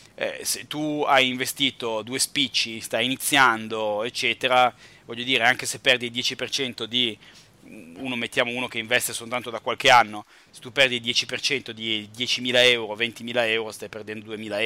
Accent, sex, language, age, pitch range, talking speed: native, male, Italian, 30-49, 110-125 Hz, 160 wpm